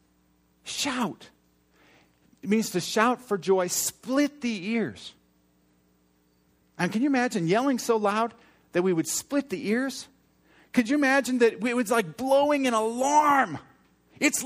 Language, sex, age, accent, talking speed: English, male, 50-69, American, 140 wpm